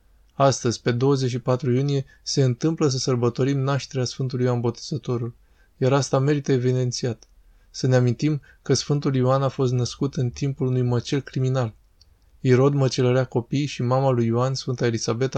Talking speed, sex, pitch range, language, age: 150 wpm, male, 120-140 Hz, Romanian, 20-39